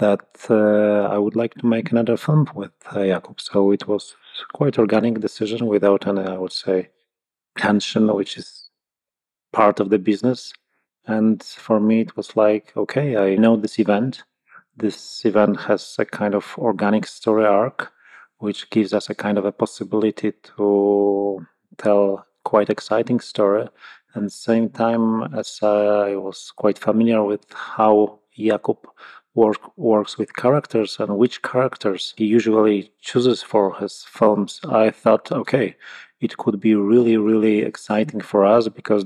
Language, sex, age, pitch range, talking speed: English, male, 30-49, 100-115 Hz, 155 wpm